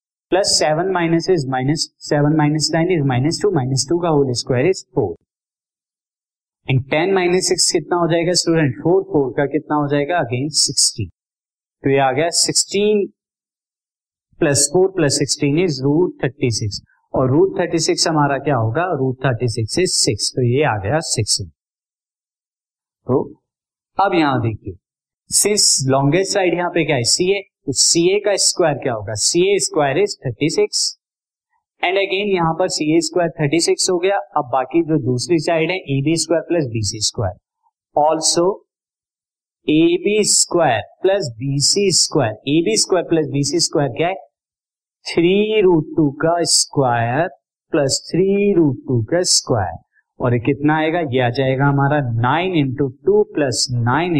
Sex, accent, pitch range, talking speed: male, native, 135-180 Hz, 155 wpm